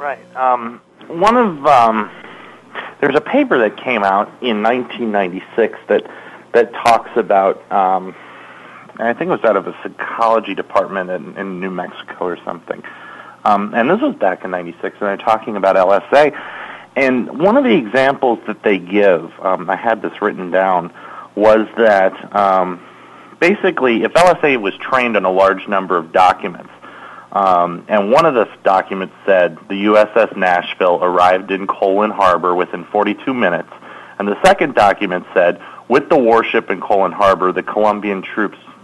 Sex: male